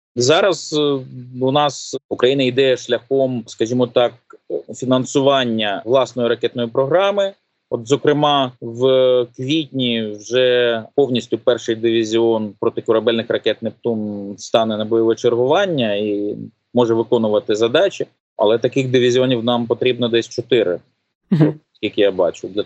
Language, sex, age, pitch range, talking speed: Ukrainian, male, 30-49, 115-130 Hz, 115 wpm